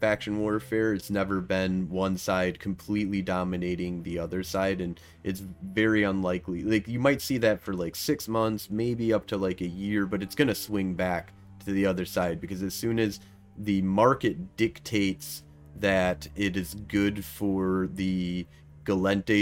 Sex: male